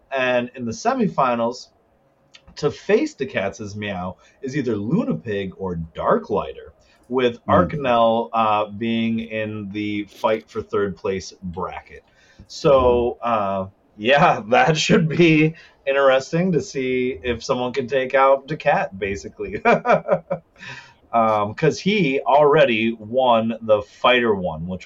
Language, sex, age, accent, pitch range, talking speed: English, male, 30-49, American, 110-140 Hz, 120 wpm